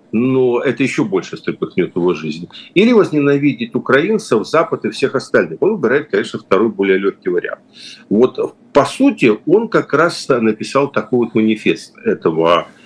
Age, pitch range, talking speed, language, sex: 50-69, 110-180 Hz, 150 wpm, Russian, male